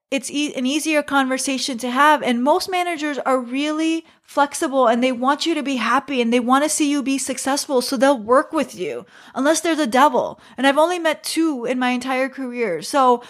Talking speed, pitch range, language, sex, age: 210 wpm, 235-300 Hz, English, female, 30-49